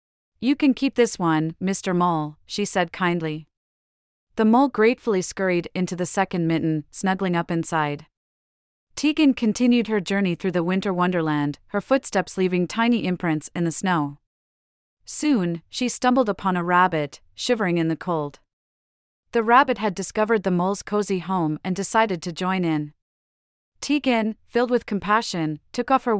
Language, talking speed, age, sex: English, 155 wpm, 30-49, female